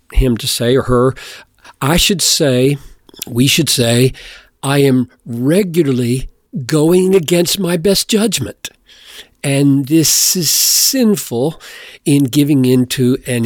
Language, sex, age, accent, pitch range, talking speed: English, male, 50-69, American, 125-160 Hz, 120 wpm